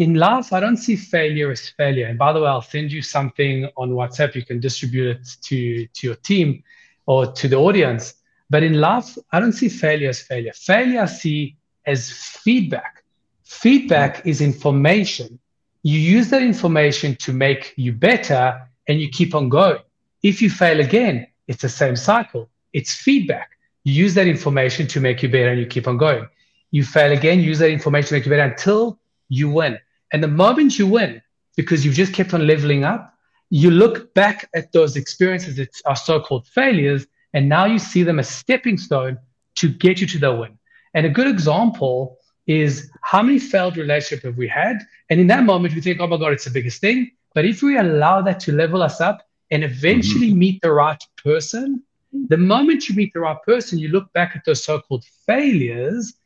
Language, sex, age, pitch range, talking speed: English, male, 30-49, 140-200 Hz, 200 wpm